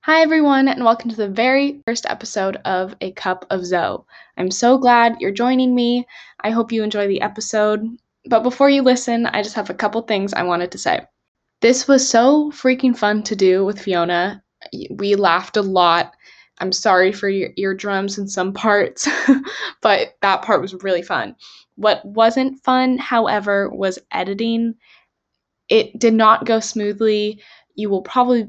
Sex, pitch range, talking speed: female, 190-235 Hz, 170 wpm